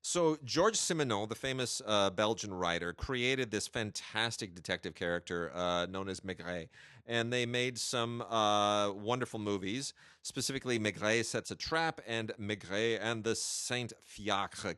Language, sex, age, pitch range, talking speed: English, male, 40-59, 85-110 Hz, 140 wpm